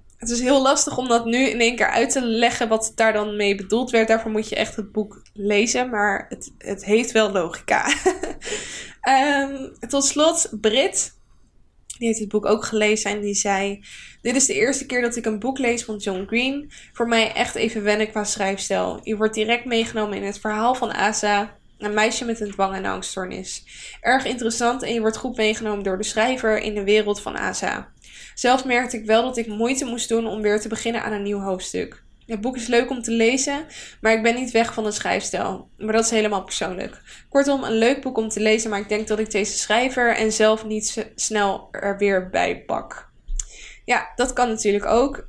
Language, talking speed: Dutch, 215 wpm